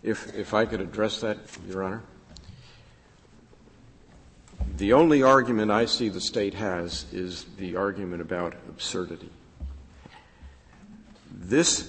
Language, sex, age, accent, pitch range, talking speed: English, male, 50-69, American, 95-120 Hz, 110 wpm